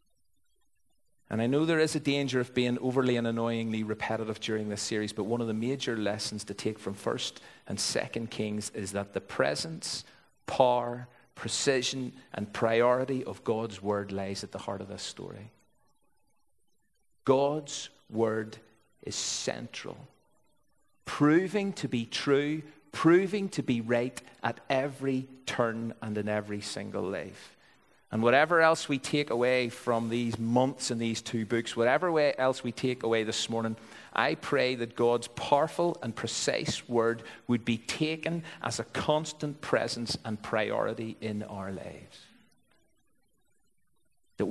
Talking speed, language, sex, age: 145 wpm, English, male, 40-59